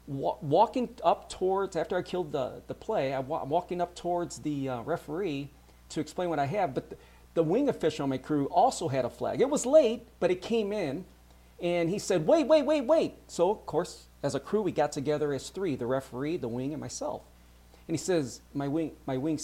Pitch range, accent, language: 135-190 Hz, American, English